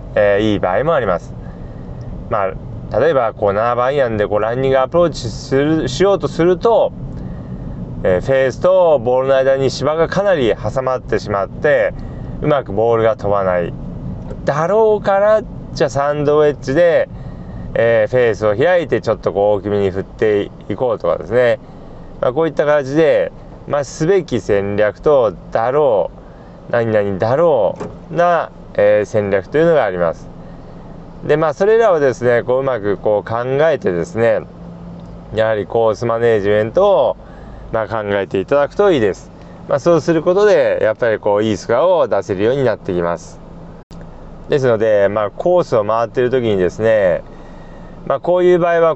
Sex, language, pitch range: male, Japanese, 110-175 Hz